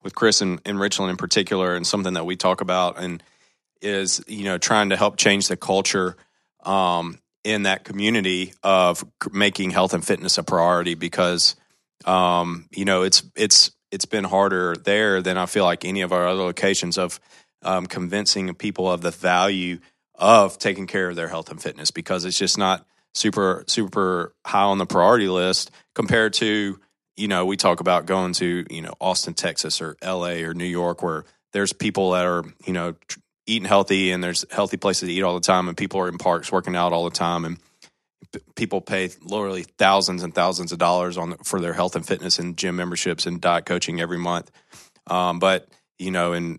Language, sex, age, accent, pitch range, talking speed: English, male, 30-49, American, 90-100 Hz, 200 wpm